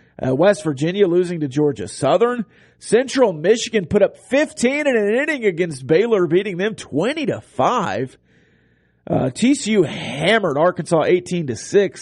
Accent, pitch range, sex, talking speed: American, 130-180 Hz, male, 140 wpm